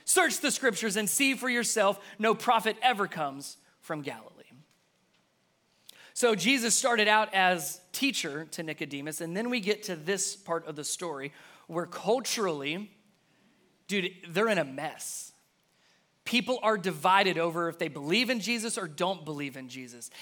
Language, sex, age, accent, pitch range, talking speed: English, male, 30-49, American, 160-220 Hz, 155 wpm